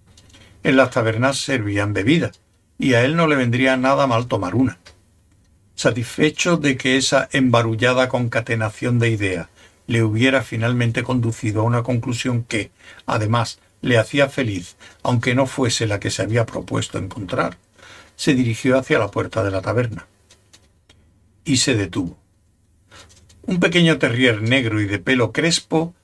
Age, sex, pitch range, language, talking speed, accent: 60-79, male, 100-135 Hz, Spanish, 145 wpm, Spanish